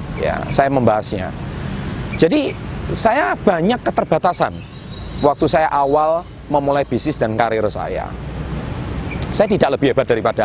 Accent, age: native, 30-49